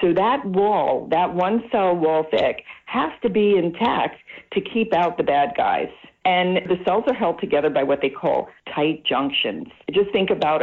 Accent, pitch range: American, 150-205 Hz